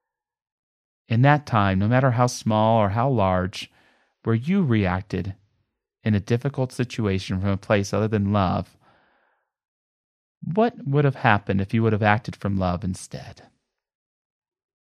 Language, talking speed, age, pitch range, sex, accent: English, 140 wpm, 30-49, 100-135 Hz, male, American